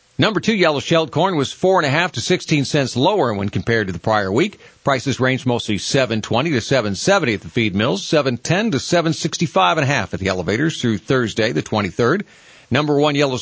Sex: male